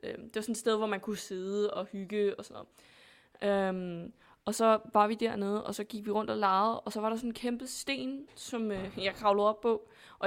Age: 20-39